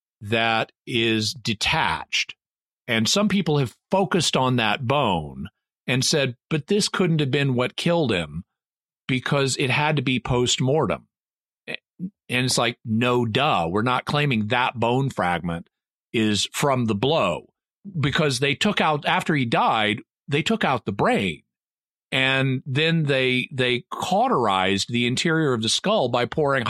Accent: American